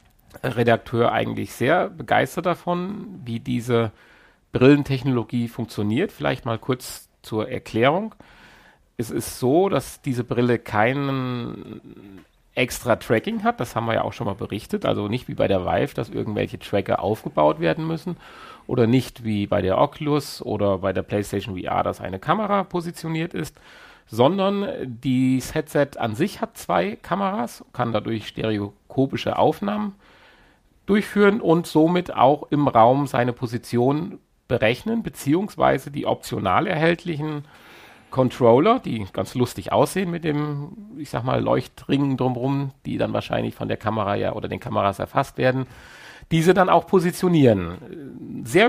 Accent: German